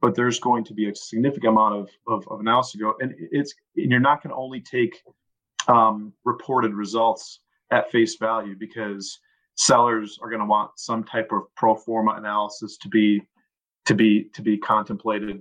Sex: male